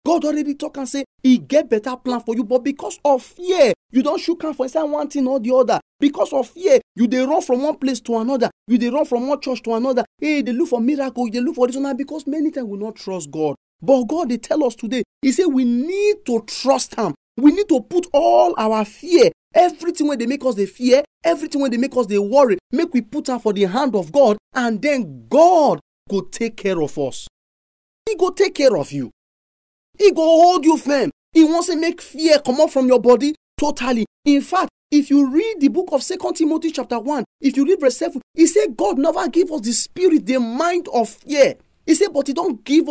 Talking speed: 245 wpm